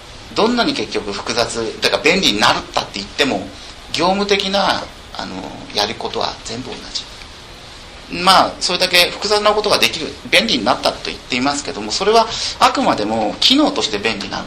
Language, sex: Japanese, male